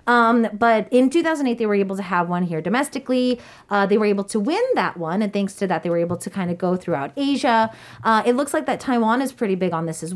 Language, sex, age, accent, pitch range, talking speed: English, female, 30-49, American, 170-235 Hz, 265 wpm